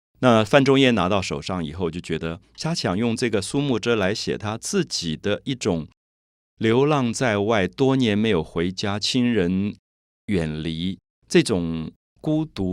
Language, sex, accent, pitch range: Chinese, male, native, 80-105 Hz